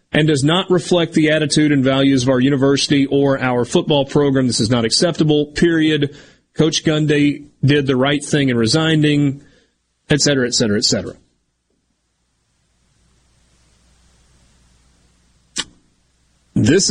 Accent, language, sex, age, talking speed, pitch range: American, English, male, 30-49, 125 wpm, 115-165 Hz